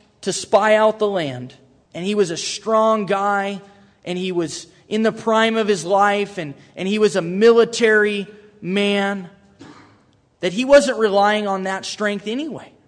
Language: English